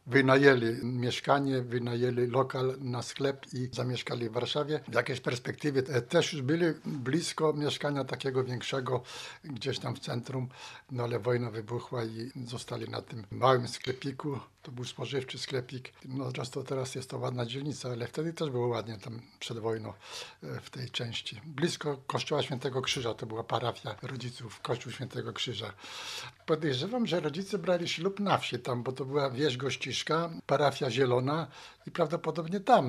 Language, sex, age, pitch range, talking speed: Polish, male, 60-79, 125-165 Hz, 150 wpm